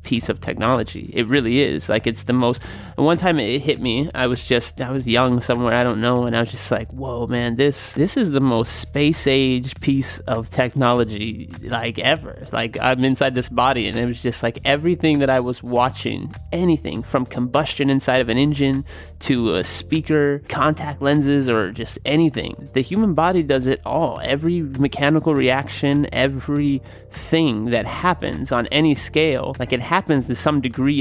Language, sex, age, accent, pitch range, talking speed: English, male, 30-49, American, 120-145 Hz, 185 wpm